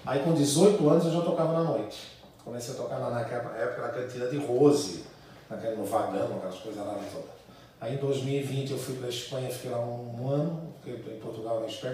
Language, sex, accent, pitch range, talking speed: Portuguese, male, Brazilian, 115-145 Hz, 205 wpm